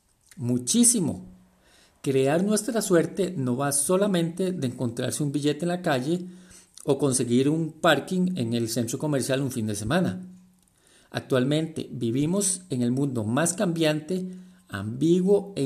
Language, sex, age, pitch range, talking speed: Spanish, male, 50-69, 120-165 Hz, 135 wpm